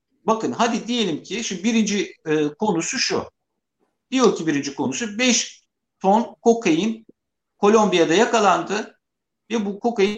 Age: 50-69